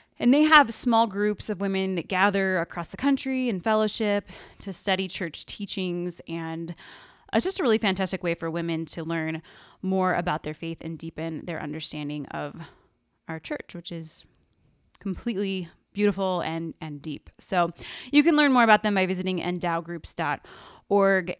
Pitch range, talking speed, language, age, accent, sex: 165-205 Hz, 160 wpm, English, 20-39, American, female